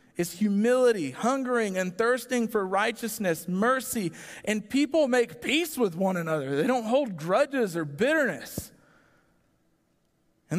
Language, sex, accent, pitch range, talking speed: English, male, American, 145-215 Hz, 125 wpm